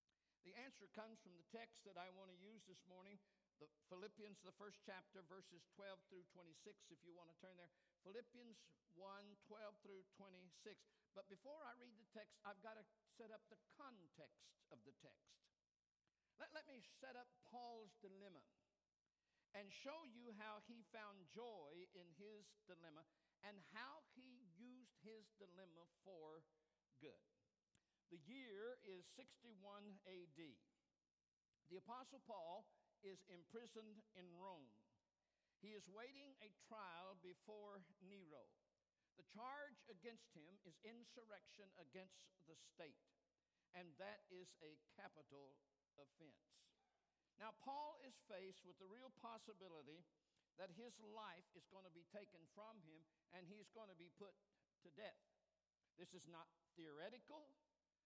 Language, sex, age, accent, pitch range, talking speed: English, male, 60-79, American, 175-220 Hz, 145 wpm